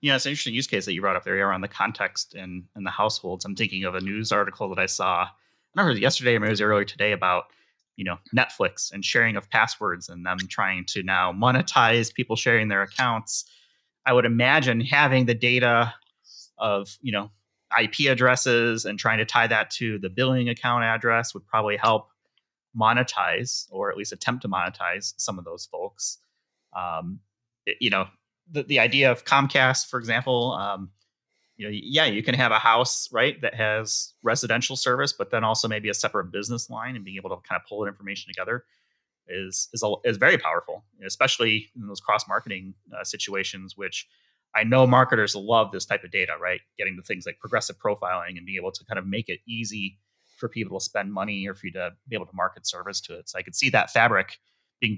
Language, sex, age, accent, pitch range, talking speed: English, male, 30-49, American, 100-120 Hz, 215 wpm